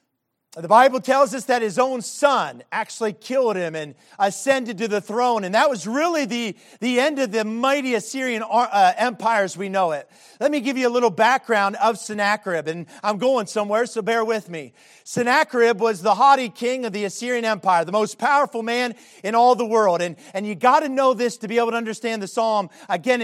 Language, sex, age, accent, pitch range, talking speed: English, male, 40-59, American, 210-265 Hz, 210 wpm